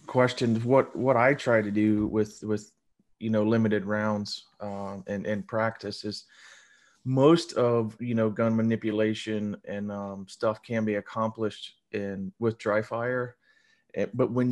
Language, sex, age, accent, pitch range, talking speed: English, male, 30-49, American, 100-115 Hz, 150 wpm